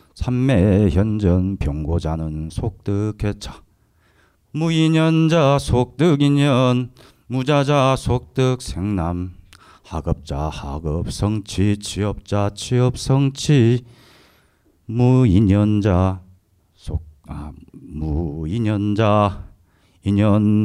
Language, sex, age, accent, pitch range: Korean, male, 40-59, native, 90-125 Hz